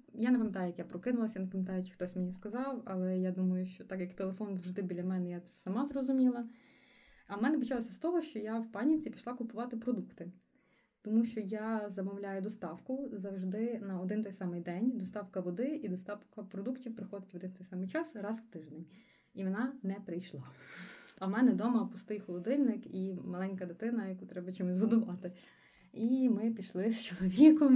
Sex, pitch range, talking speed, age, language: female, 185-235 Hz, 190 wpm, 20-39, Ukrainian